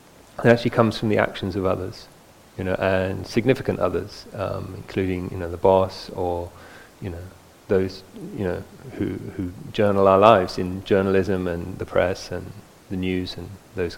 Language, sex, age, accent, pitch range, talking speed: English, male, 30-49, British, 90-110 Hz, 170 wpm